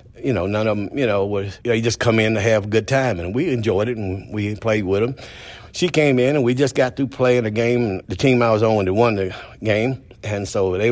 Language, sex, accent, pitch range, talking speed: English, male, American, 105-125 Hz, 285 wpm